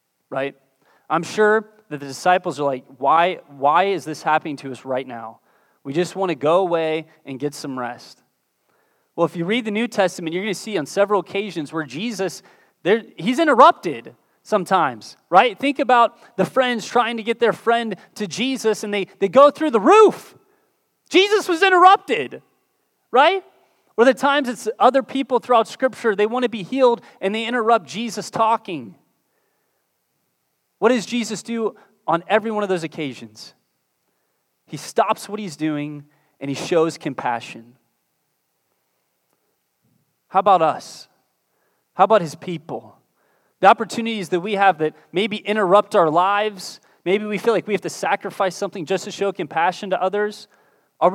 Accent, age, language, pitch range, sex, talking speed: American, 30-49, English, 165-230 Hz, male, 165 wpm